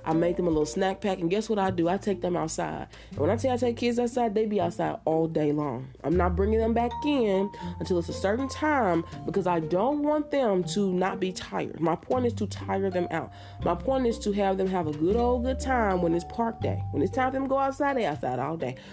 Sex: female